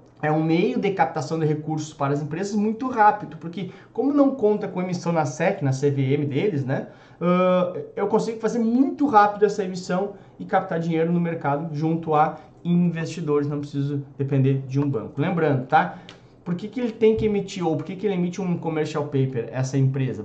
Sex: male